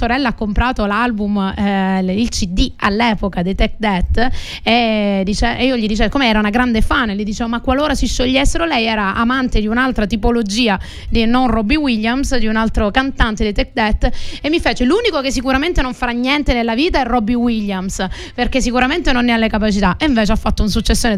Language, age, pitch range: Italian, 30-49, 215-260 Hz